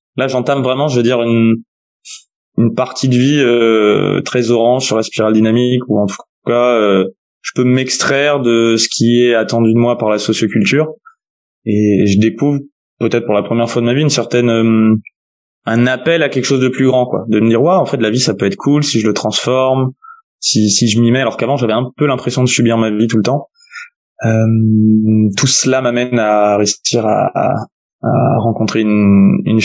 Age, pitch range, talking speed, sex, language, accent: 20-39, 110-130 Hz, 215 wpm, male, French, French